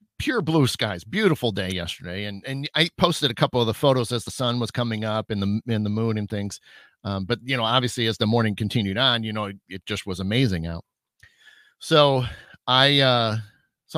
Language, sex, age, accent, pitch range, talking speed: English, male, 40-59, American, 105-140 Hz, 215 wpm